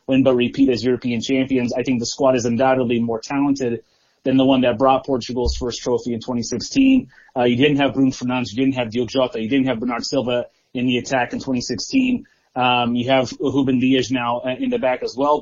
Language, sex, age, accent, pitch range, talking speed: English, male, 30-49, American, 125-150 Hz, 220 wpm